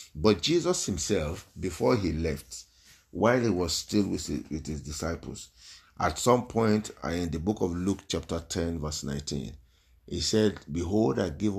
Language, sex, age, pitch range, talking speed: English, male, 50-69, 80-110 Hz, 160 wpm